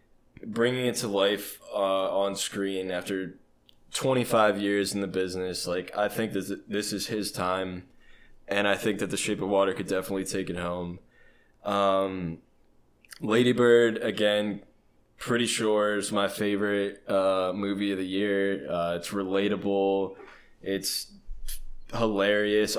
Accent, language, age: American, English, 20-39